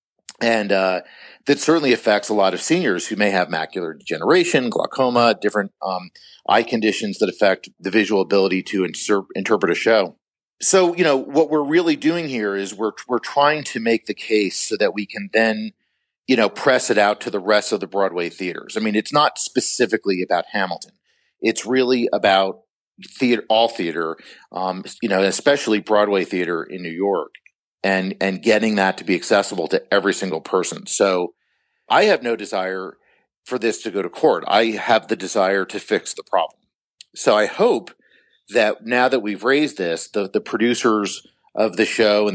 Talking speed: 185 wpm